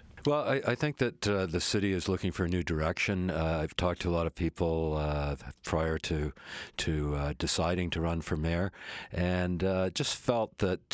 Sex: male